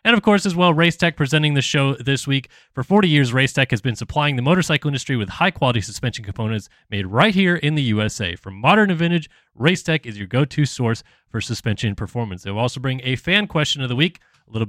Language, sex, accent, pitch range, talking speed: English, male, American, 115-150 Hz, 220 wpm